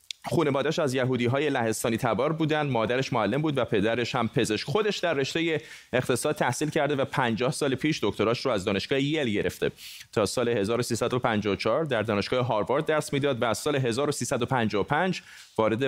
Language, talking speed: Persian, 165 wpm